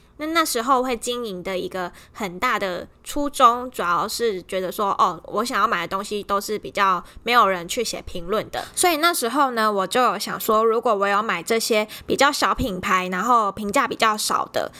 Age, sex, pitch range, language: 20-39, female, 195-245 Hz, Chinese